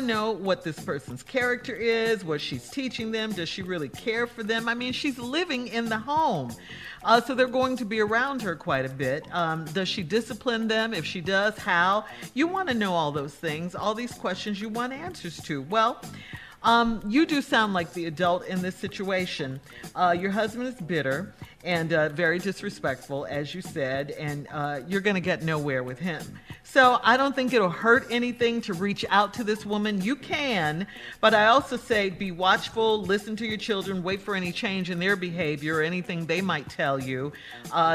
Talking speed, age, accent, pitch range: 200 wpm, 50-69, American, 155-220 Hz